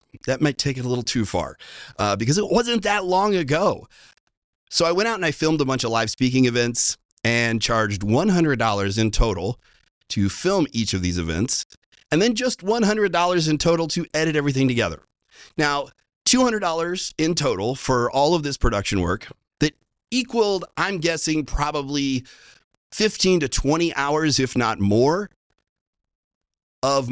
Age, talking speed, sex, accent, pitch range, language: 30-49, 160 wpm, male, American, 120-170 Hz, English